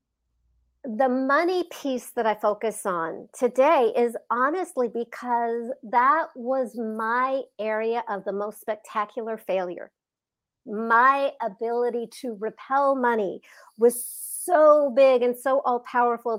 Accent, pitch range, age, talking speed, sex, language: American, 205-250 Hz, 50-69, 115 wpm, female, English